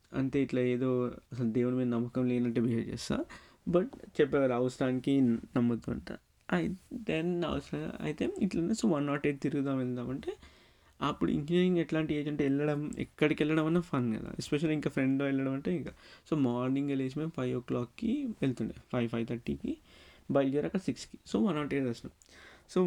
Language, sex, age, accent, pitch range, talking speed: Telugu, male, 20-39, native, 125-155 Hz, 160 wpm